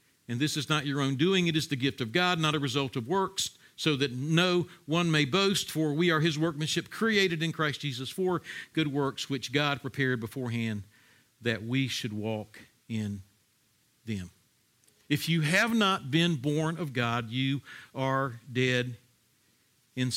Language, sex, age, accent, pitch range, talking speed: English, male, 50-69, American, 135-180 Hz, 175 wpm